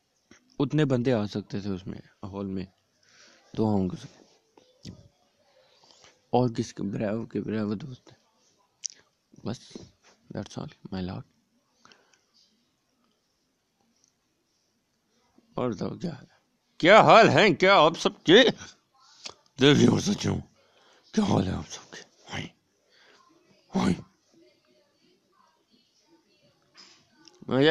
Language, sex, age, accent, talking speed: Hindi, male, 50-69, native, 80 wpm